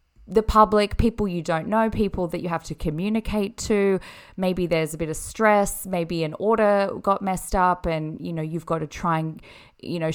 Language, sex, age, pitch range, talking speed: English, female, 20-39, 165-210 Hz, 205 wpm